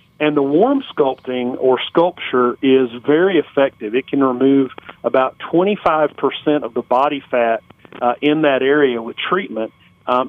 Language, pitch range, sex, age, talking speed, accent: English, 130-150 Hz, male, 40-59, 145 wpm, American